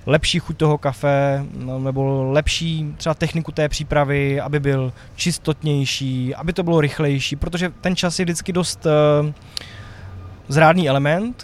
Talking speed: 135 wpm